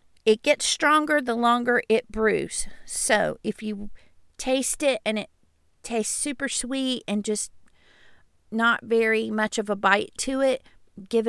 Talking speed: 150 wpm